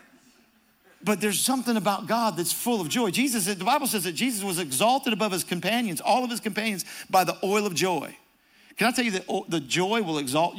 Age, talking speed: 50-69, 215 wpm